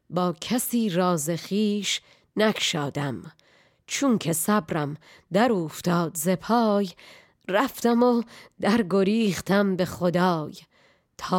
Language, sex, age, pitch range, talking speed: Persian, female, 30-49, 170-215 Hz, 90 wpm